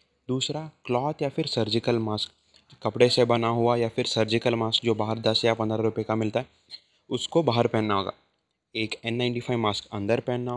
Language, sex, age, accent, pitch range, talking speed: Hindi, male, 20-39, native, 110-130 Hz, 185 wpm